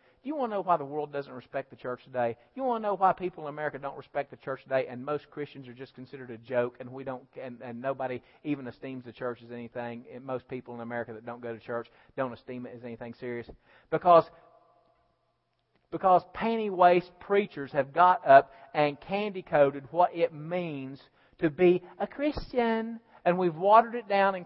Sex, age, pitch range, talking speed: male, 40-59, 135-225 Hz, 205 wpm